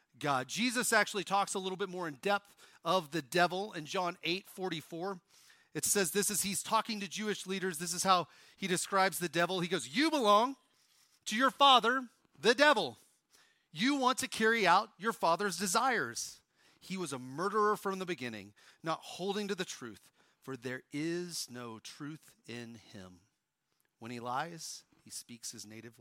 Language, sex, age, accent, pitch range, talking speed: English, male, 40-59, American, 150-205 Hz, 175 wpm